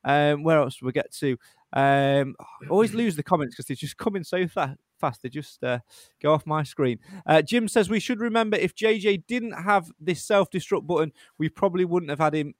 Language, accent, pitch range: English, British, 150-200 Hz